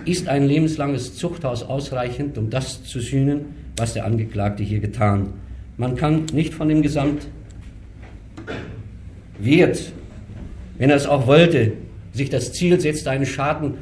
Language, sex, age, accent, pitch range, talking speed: German, male, 50-69, German, 105-150 Hz, 140 wpm